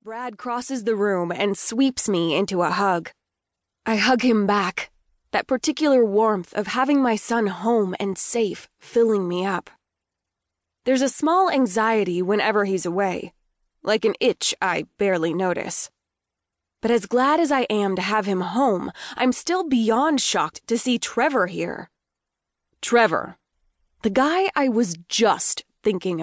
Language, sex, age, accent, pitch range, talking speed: English, female, 20-39, American, 185-250 Hz, 150 wpm